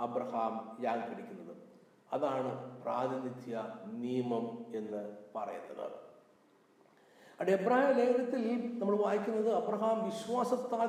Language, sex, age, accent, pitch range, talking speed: Malayalam, male, 60-79, native, 140-210 Hz, 85 wpm